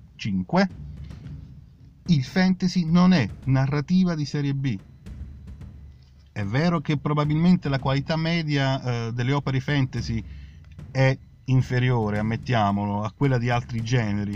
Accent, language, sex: native, Italian, male